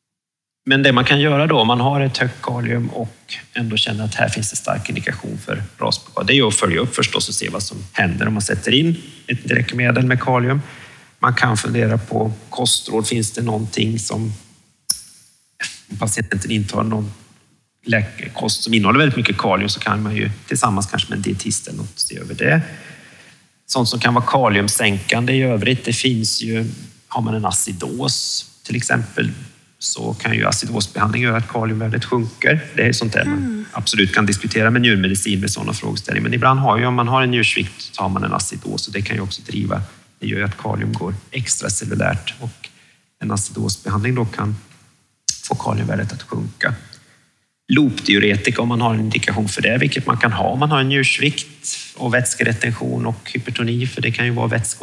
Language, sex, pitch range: Swedish, male, 105-125 Hz